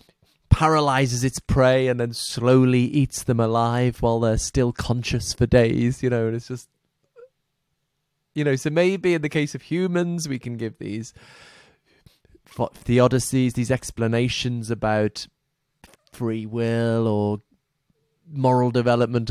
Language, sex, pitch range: English, male, 120-155 Hz